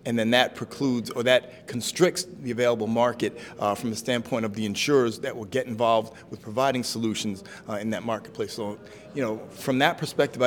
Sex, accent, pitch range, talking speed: male, American, 115-130 Hz, 195 wpm